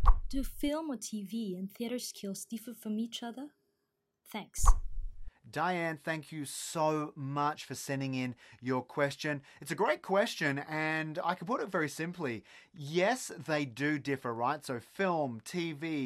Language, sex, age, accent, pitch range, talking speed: English, male, 30-49, Australian, 125-170 Hz, 155 wpm